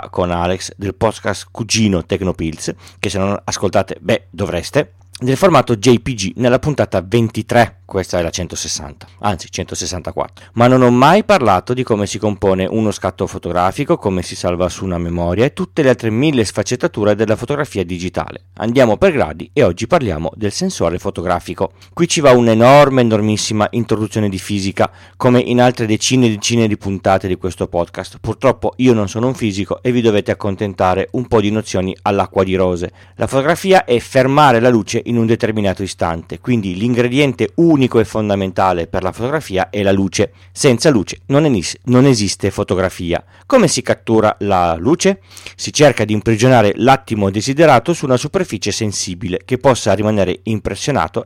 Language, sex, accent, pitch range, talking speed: Italian, male, native, 95-125 Hz, 165 wpm